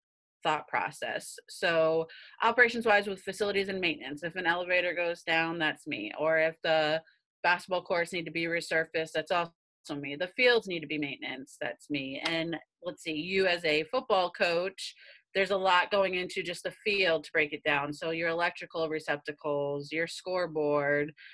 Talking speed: 175 wpm